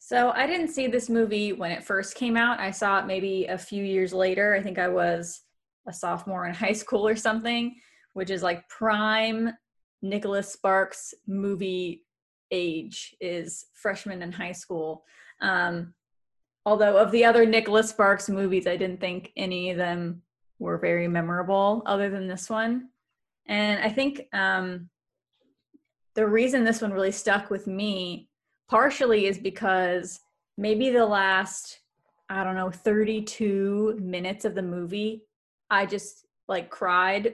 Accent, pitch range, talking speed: American, 185-220 Hz, 150 wpm